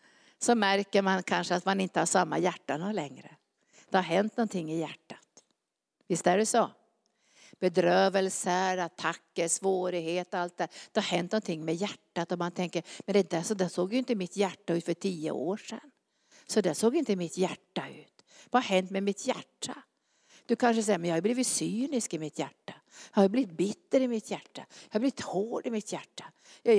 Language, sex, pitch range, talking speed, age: Swedish, female, 185-245 Hz, 205 wpm, 60-79